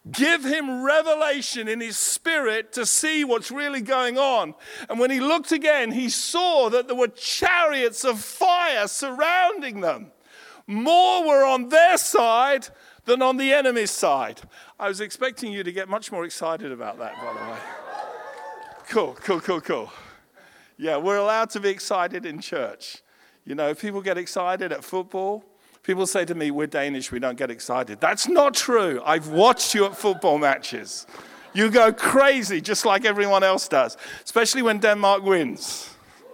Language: Danish